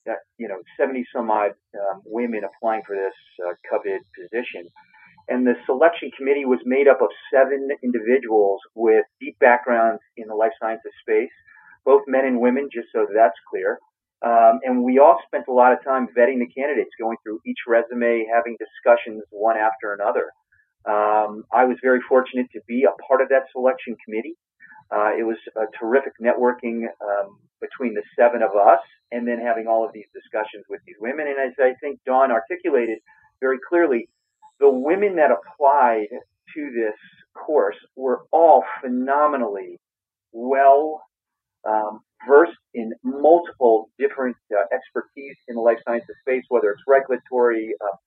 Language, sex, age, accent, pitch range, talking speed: English, male, 40-59, American, 110-140 Hz, 165 wpm